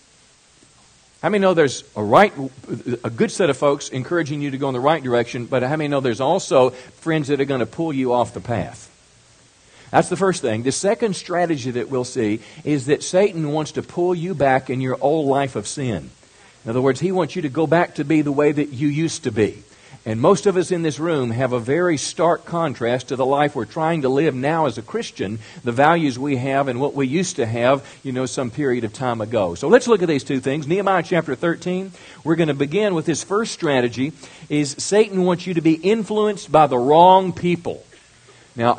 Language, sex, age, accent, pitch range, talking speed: English, male, 50-69, American, 130-175 Hz, 225 wpm